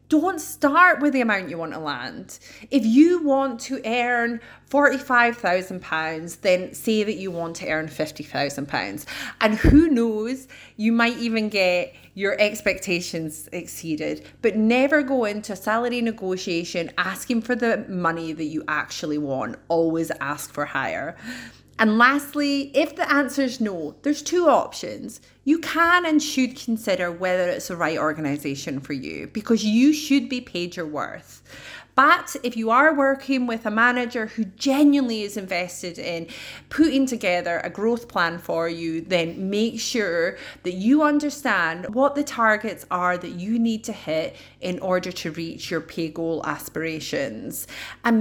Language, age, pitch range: English, 30-49, 165-250 Hz